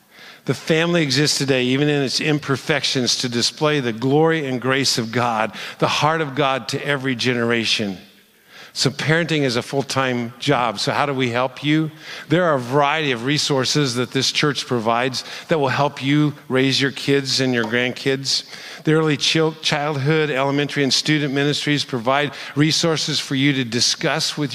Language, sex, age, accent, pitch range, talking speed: English, male, 50-69, American, 115-145 Hz, 170 wpm